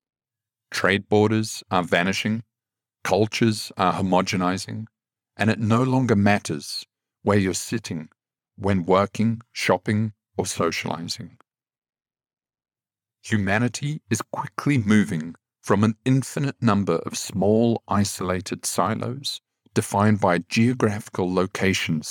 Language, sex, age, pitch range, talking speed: English, male, 50-69, 95-115 Hz, 100 wpm